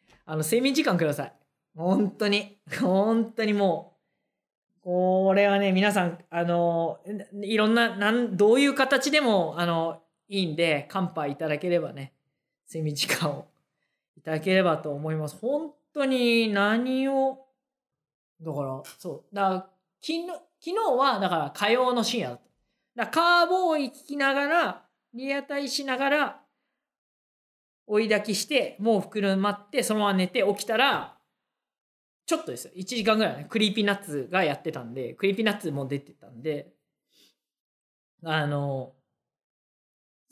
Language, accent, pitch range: Japanese, native, 160-230 Hz